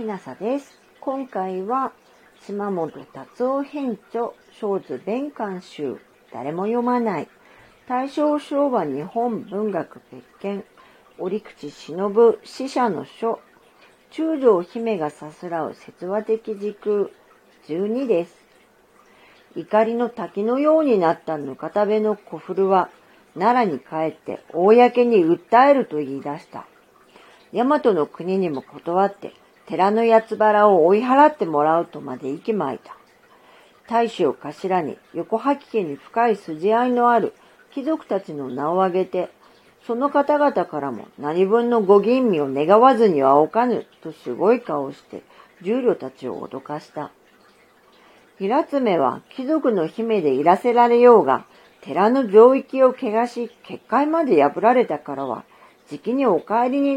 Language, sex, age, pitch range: Japanese, female, 50-69, 170-245 Hz